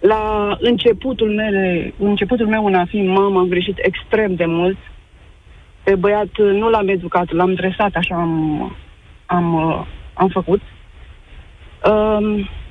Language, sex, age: Romanian, female, 30-49